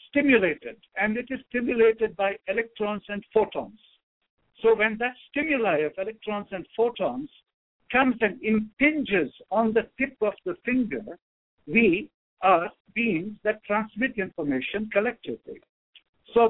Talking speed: 125 wpm